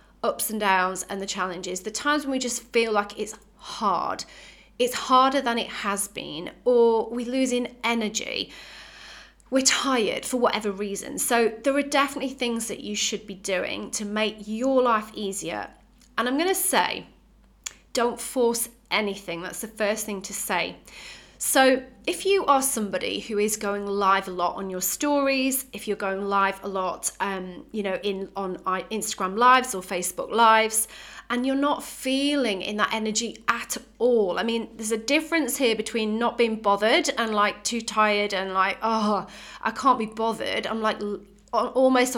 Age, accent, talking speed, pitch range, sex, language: 30-49, British, 175 wpm, 200-245 Hz, female, English